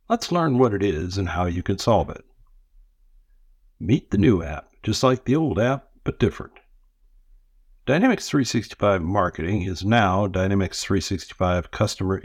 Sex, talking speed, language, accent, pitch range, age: male, 145 wpm, English, American, 90-115 Hz, 60-79